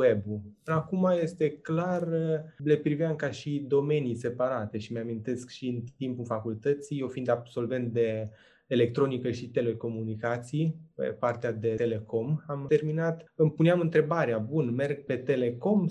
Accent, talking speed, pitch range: native, 130 wpm, 120-150 Hz